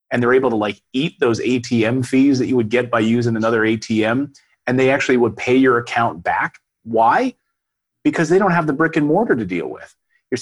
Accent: American